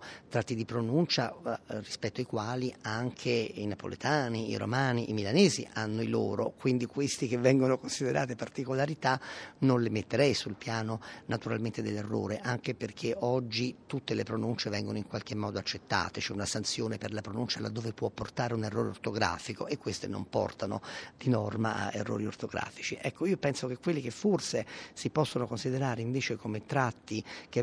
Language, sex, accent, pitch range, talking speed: Italian, male, native, 115-140 Hz, 165 wpm